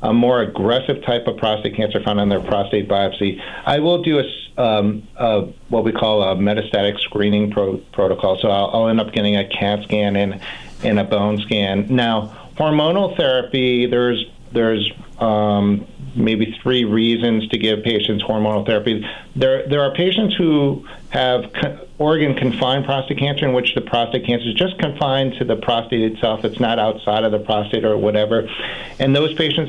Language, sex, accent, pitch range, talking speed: English, male, American, 105-130 Hz, 175 wpm